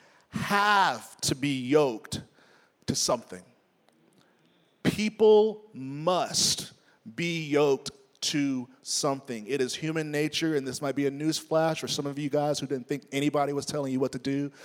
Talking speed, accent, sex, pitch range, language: 155 wpm, American, male, 130-160 Hz, English